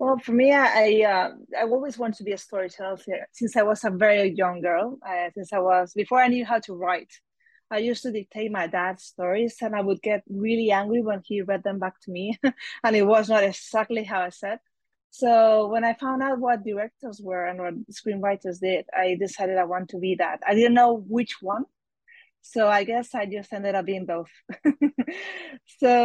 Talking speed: 210 wpm